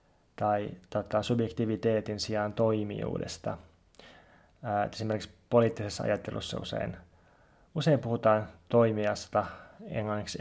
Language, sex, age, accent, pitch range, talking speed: Finnish, male, 20-39, native, 105-115 Hz, 70 wpm